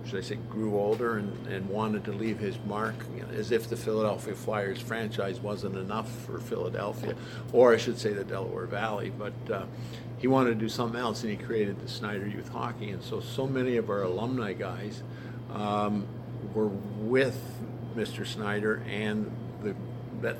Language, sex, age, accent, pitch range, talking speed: English, male, 50-69, American, 105-120 Hz, 175 wpm